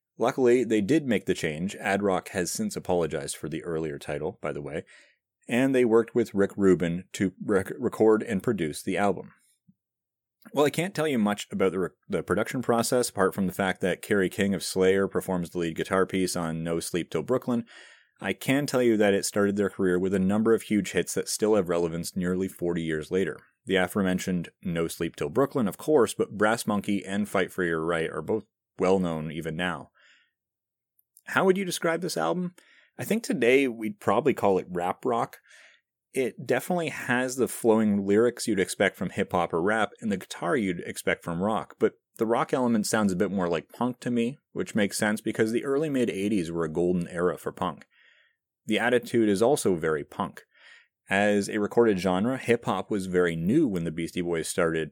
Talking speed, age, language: 200 wpm, 30-49, English